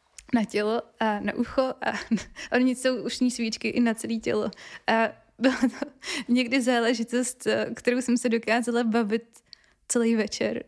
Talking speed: 145 wpm